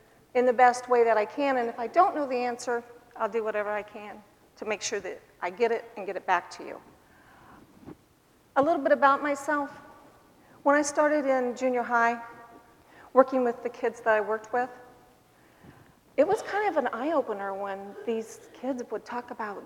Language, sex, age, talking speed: English, female, 40-59, 190 wpm